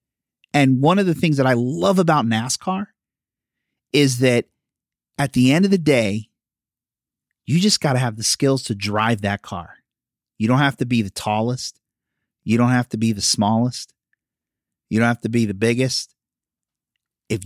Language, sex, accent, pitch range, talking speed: English, male, American, 110-140 Hz, 175 wpm